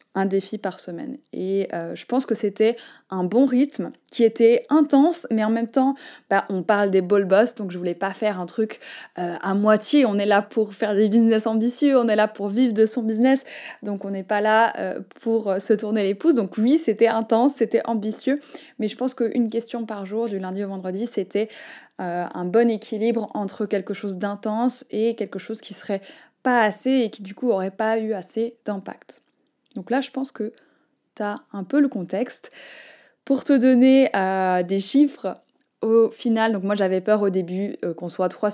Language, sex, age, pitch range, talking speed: French, female, 20-39, 200-240 Hz, 205 wpm